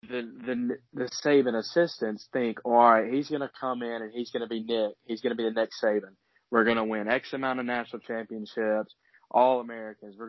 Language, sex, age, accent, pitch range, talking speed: English, male, 20-39, American, 115-135 Hz, 220 wpm